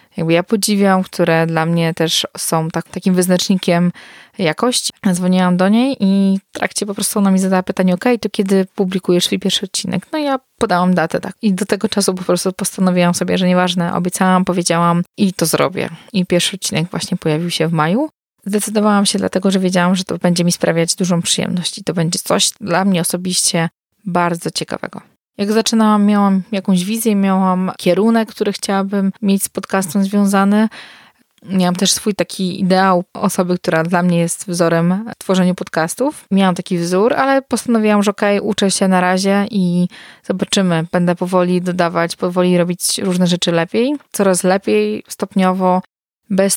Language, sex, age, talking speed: Polish, female, 20-39, 175 wpm